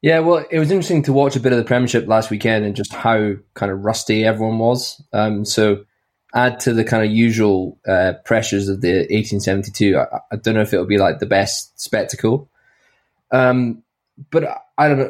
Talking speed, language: 205 wpm, English